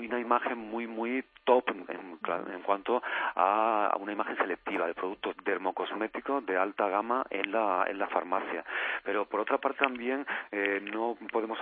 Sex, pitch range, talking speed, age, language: male, 95-115 Hz, 165 wpm, 40-59, Spanish